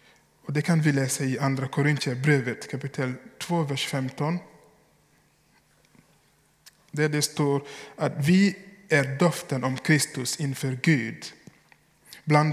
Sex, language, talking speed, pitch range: male, Swedish, 120 wpm, 135-160 Hz